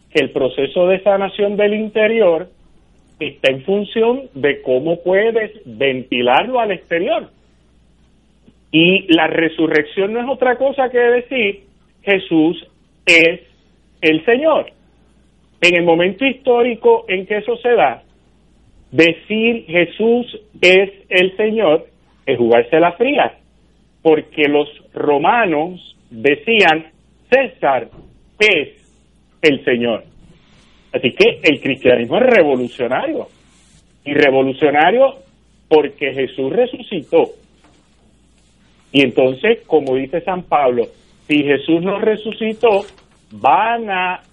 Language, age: Spanish, 40-59